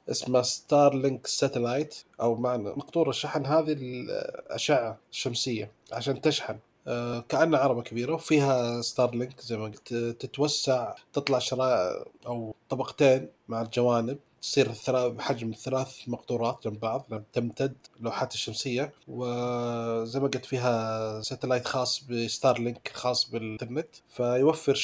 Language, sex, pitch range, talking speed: Arabic, male, 120-135 Hz, 115 wpm